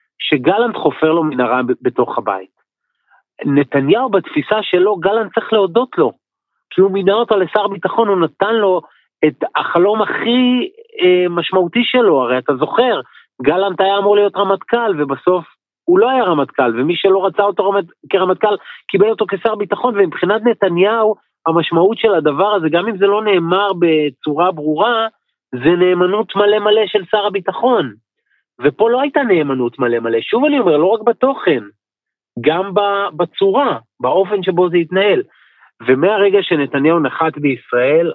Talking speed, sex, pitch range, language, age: 145 wpm, male, 155-220 Hz, Hebrew, 30-49